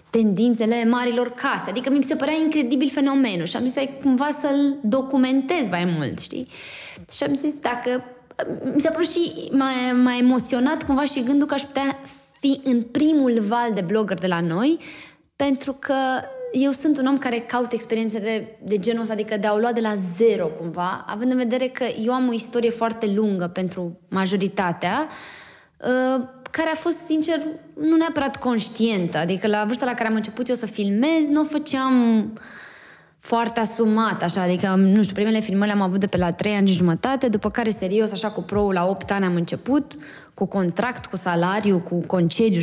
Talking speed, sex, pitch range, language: 190 wpm, female, 205-275 Hz, Romanian